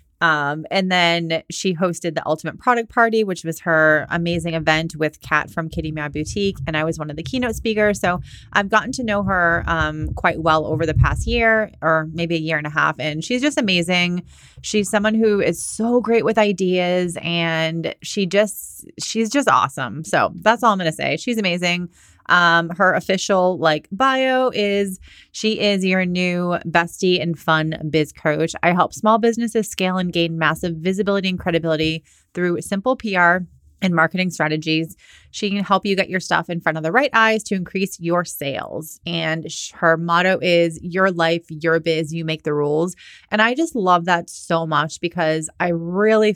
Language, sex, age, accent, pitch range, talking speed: English, female, 30-49, American, 160-195 Hz, 190 wpm